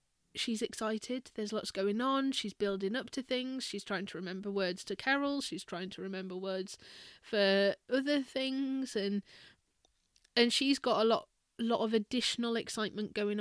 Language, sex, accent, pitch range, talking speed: English, female, British, 185-235 Hz, 170 wpm